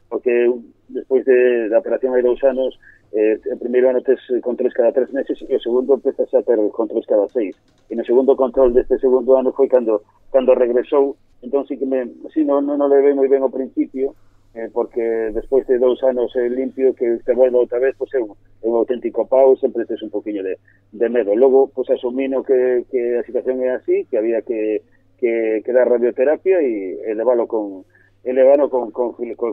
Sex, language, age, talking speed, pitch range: male, Spanish, 40-59, 210 wpm, 115-140 Hz